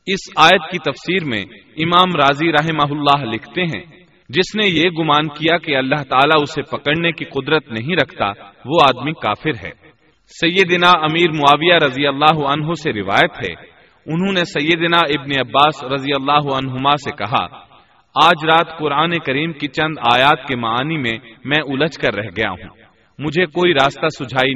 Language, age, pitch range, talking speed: Urdu, 30-49, 125-160 Hz, 165 wpm